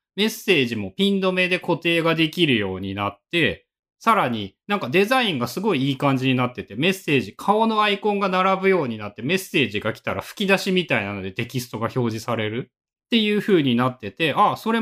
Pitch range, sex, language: 120-195 Hz, male, Japanese